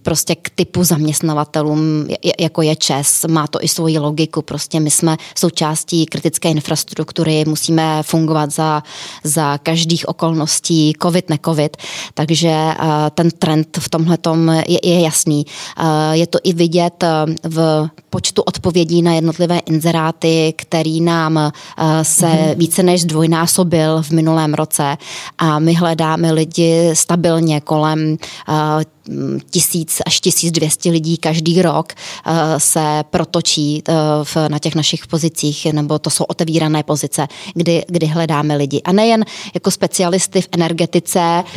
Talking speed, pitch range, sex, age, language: 125 wpm, 155-170 Hz, female, 20-39, Czech